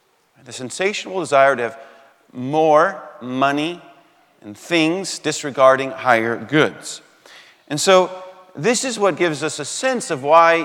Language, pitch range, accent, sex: English, 130-175 Hz, American, male